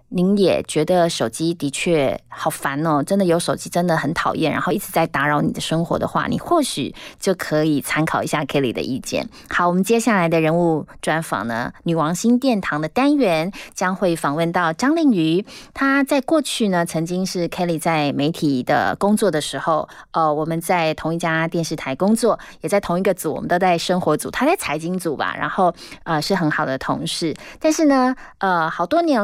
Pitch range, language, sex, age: 155-205 Hz, Chinese, female, 20-39